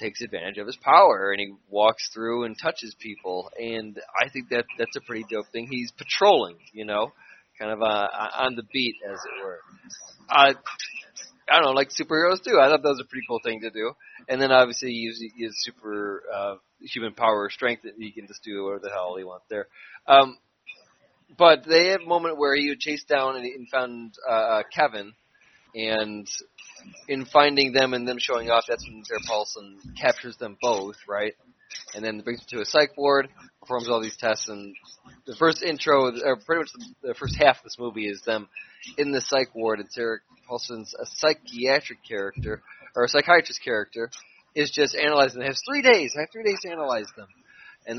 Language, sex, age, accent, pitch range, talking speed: English, male, 20-39, American, 110-145 Hz, 200 wpm